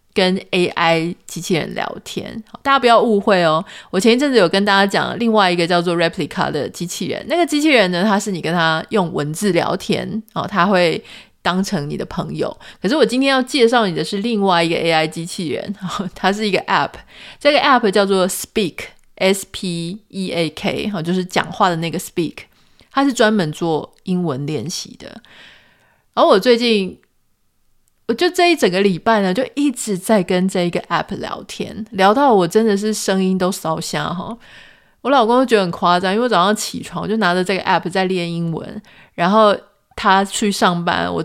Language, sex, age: Chinese, female, 30-49